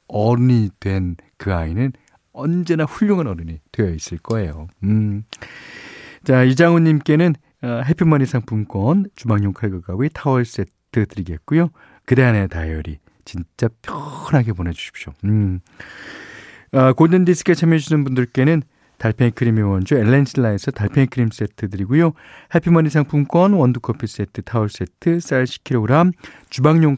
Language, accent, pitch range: Korean, native, 100-150 Hz